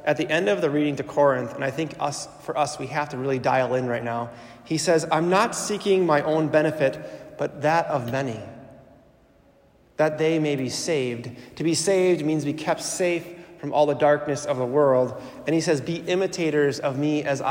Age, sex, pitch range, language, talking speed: 30-49, male, 130-160 Hz, English, 210 wpm